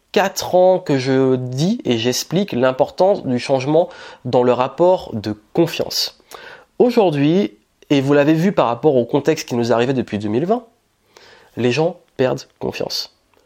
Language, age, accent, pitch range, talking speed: French, 30-49, French, 120-180 Hz, 145 wpm